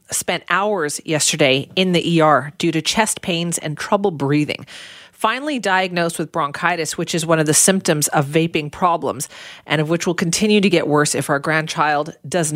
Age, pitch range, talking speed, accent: 40-59, 155-195 Hz, 180 wpm, American